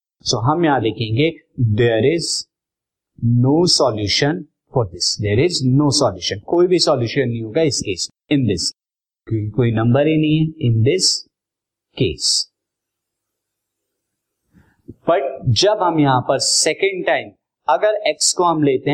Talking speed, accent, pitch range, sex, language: 145 wpm, native, 120-155 Hz, male, Hindi